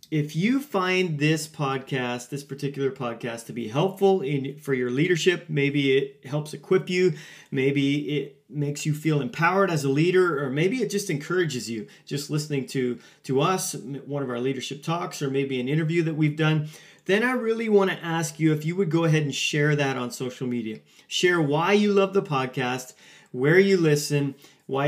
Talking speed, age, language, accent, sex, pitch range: 190 wpm, 30-49, English, American, male, 125-155 Hz